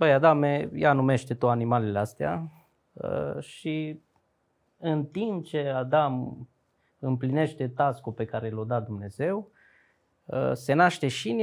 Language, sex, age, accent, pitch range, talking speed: Romanian, male, 20-39, native, 120-155 Hz, 125 wpm